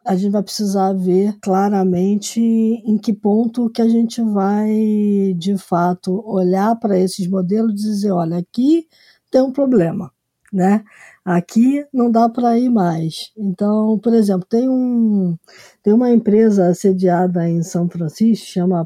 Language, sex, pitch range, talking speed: Portuguese, female, 190-235 Hz, 145 wpm